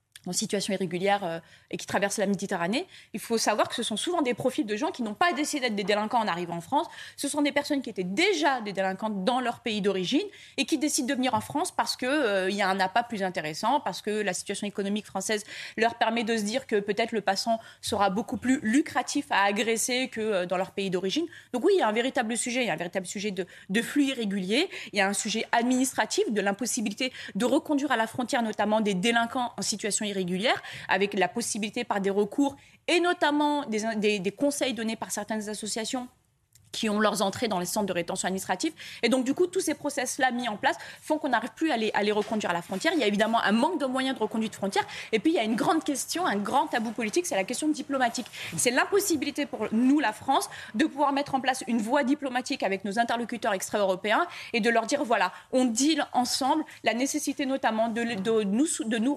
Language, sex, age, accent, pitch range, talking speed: French, female, 20-39, French, 205-275 Hz, 235 wpm